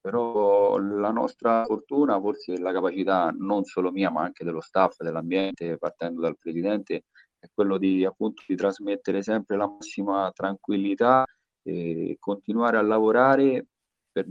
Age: 40-59